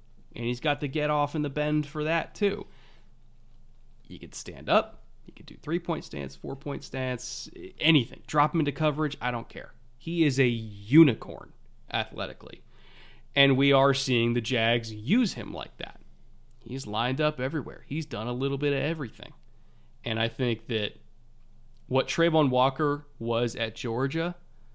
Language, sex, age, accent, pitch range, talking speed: English, male, 30-49, American, 115-145 Hz, 160 wpm